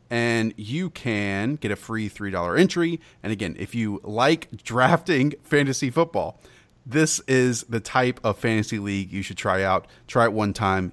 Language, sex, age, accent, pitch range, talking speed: English, male, 30-49, American, 100-135 Hz, 170 wpm